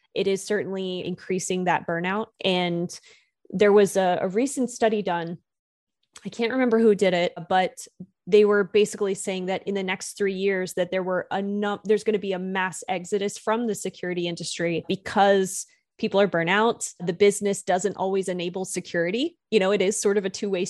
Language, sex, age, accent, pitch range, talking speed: English, female, 20-39, American, 180-210 Hz, 190 wpm